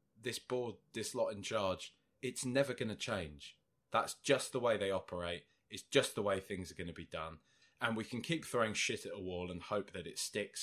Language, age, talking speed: English, 20-39, 230 wpm